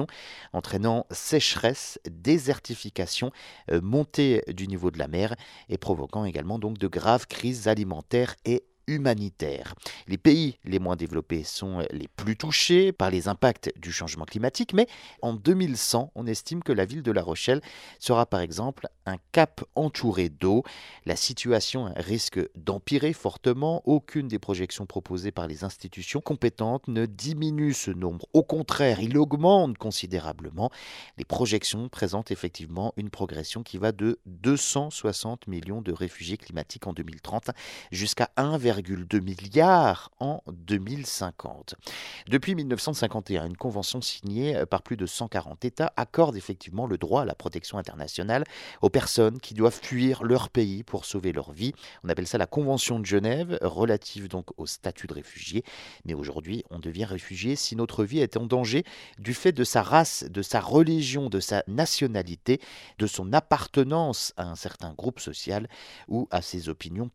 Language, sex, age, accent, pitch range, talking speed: French, male, 40-59, French, 95-130 Hz, 155 wpm